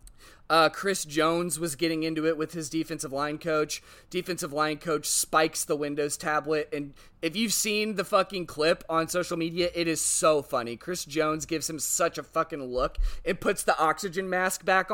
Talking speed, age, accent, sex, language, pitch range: 190 wpm, 20-39, American, male, English, 145-185 Hz